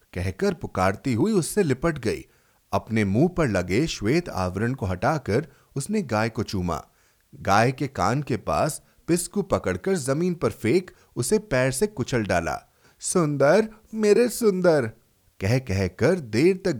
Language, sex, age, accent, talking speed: Hindi, male, 30-49, native, 145 wpm